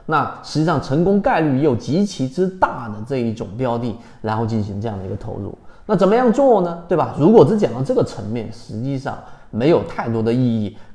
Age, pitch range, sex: 30-49, 110-140 Hz, male